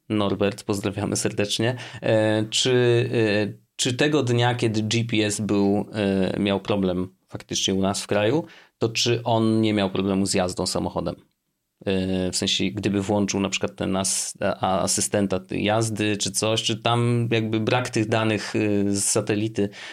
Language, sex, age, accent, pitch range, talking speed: Polish, male, 30-49, native, 95-125 Hz, 140 wpm